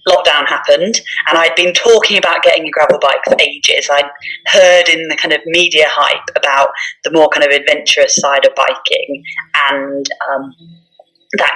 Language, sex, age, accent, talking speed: English, female, 20-39, British, 170 wpm